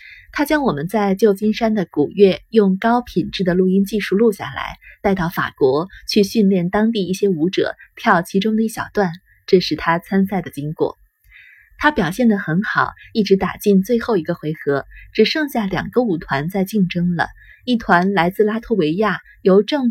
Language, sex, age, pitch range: Chinese, female, 30-49, 175-225 Hz